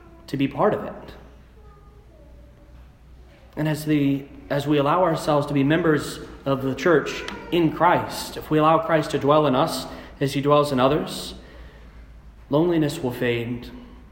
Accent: American